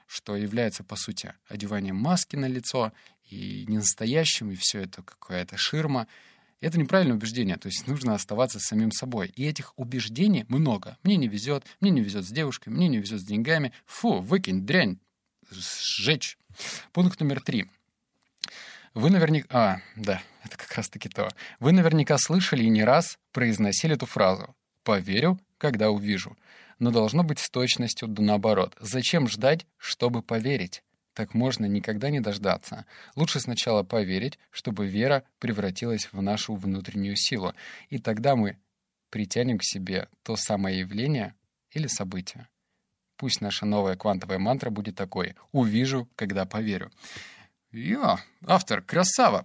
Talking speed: 140 wpm